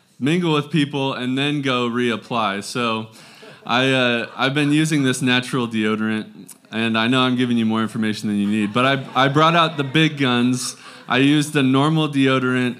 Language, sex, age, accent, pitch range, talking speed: English, male, 20-39, American, 120-150 Hz, 190 wpm